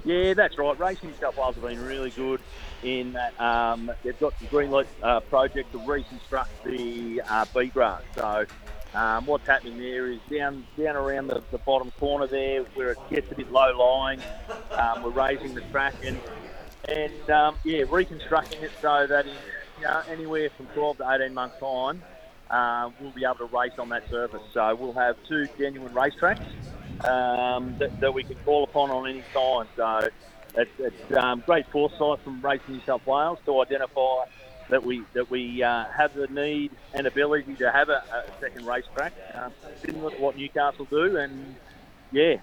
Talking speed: 185 wpm